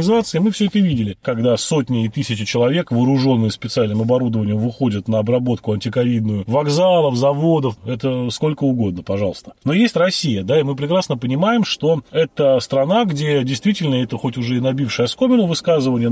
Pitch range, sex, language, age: 115-180 Hz, male, Russian, 30-49